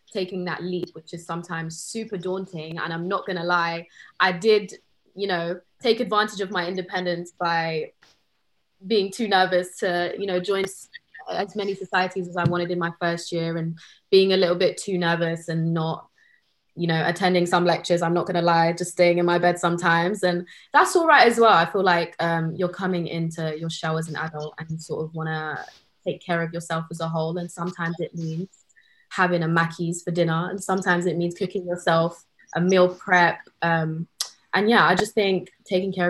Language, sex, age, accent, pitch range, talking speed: English, female, 20-39, British, 165-185 Hz, 200 wpm